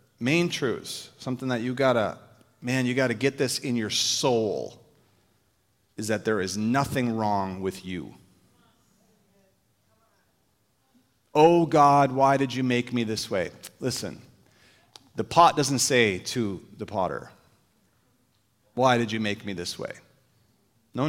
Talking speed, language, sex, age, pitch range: 135 wpm, English, male, 30-49, 110-150 Hz